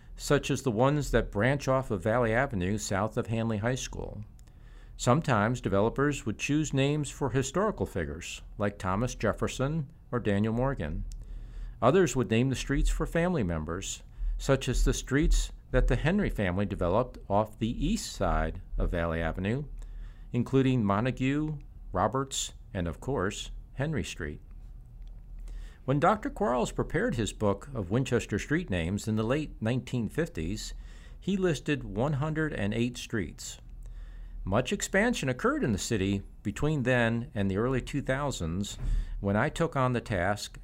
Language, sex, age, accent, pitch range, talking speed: English, male, 50-69, American, 100-135 Hz, 145 wpm